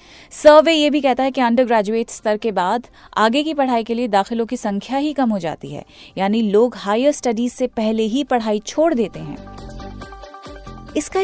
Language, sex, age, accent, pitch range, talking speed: Hindi, female, 30-49, native, 215-285 Hz, 190 wpm